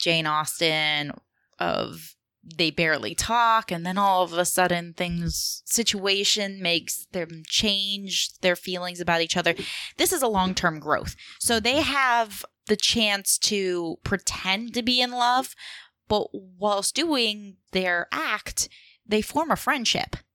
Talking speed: 140 wpm